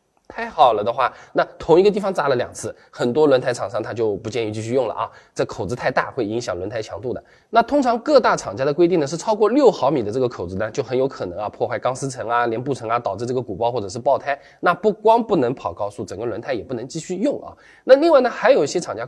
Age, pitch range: 20-39, 140-230 Hz